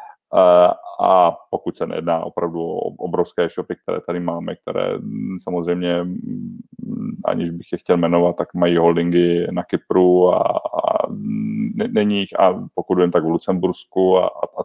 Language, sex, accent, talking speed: Czech, male, native, 145 wpm